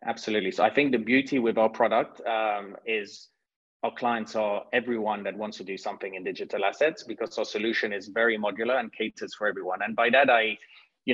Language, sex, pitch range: English, male, 105-120 Hz